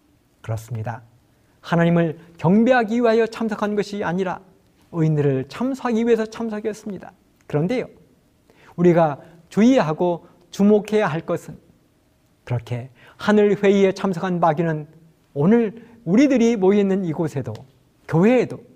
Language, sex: Korean, male